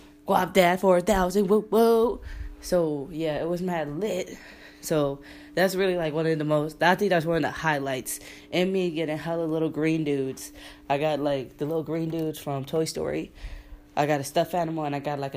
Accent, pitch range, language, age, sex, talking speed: American, 140-170 Hz, English, 10-29, female, 210 wpm